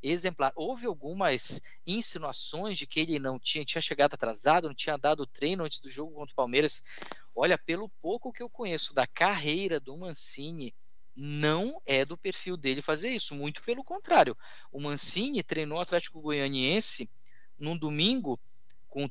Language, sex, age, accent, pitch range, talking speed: Portuguese, male, 20-39, Brazilian, 140-185 Hz, 160 wpm